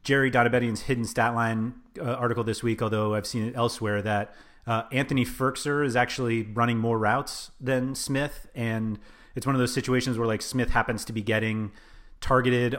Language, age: English, 30-49